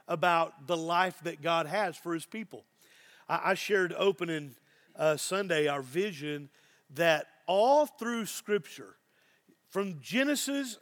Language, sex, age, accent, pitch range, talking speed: English, male, 40-59, American, 160-215 Hz, 120 wpm